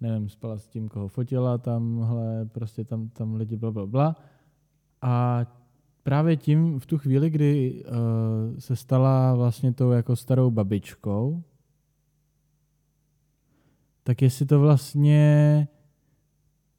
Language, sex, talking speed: Czech, male, 120 wpm